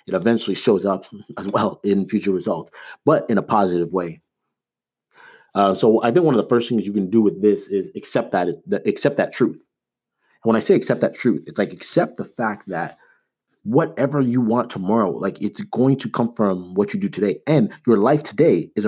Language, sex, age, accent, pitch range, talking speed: English, male, 30-49, American, 95-115 Hz, 210 wpm